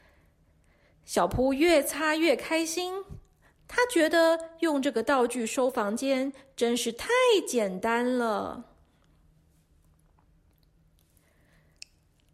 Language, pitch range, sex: Chinese, 210-335 Hz, female